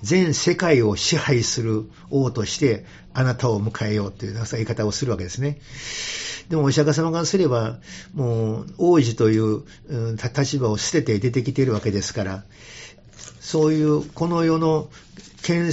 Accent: native